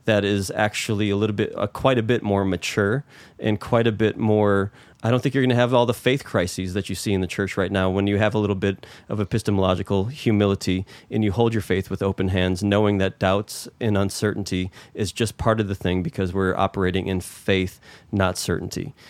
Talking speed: 225 wpm